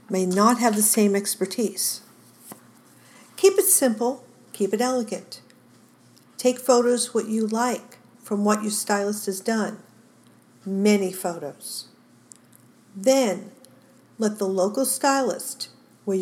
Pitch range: 200-250 Hz